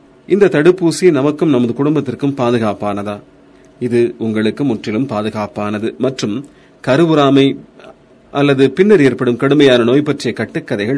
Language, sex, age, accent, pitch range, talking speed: Tamil, male, 40-59, native, 115-145 Hz, 100 wpm